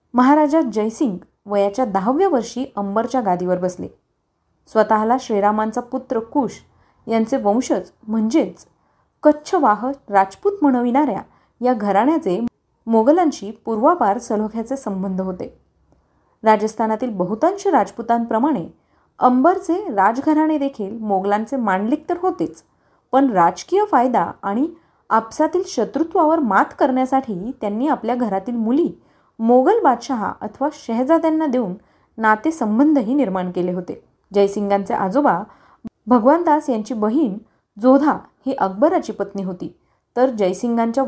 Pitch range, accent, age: 205-285 Hz, native, 30-49